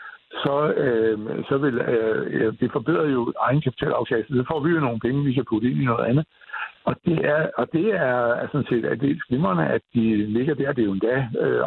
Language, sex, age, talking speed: Danish, male, 60-79, 220 wpm